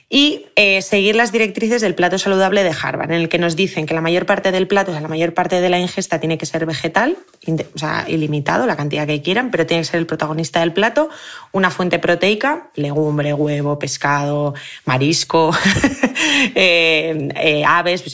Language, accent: Spanish, Spanish